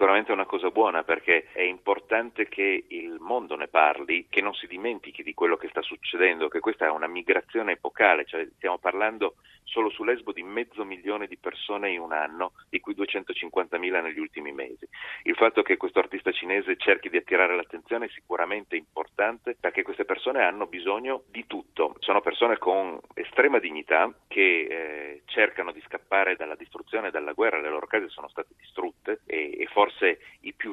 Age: 40-59